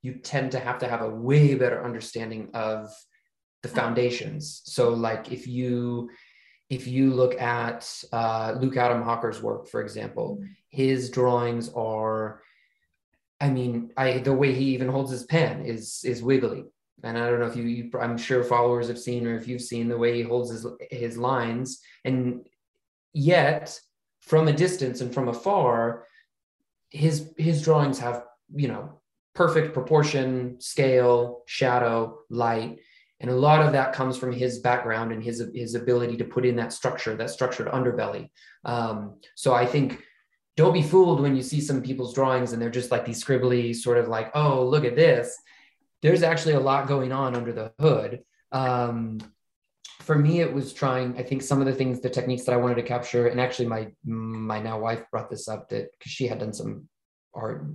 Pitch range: 120-135 Hz